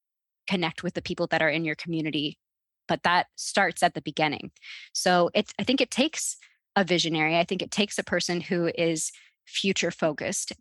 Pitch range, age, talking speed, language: 160-185 Hz, 20-39, 185 wpm, English